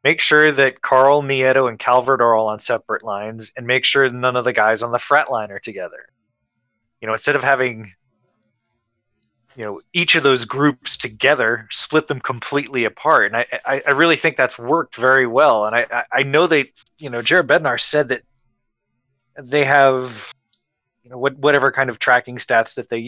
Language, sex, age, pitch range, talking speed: English, male, 20-39, 115-140 Hz, 190 wpm